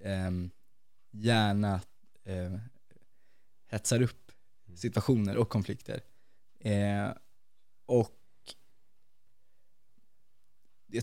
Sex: male